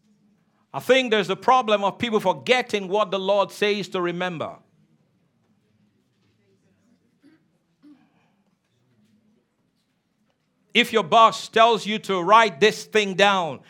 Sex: male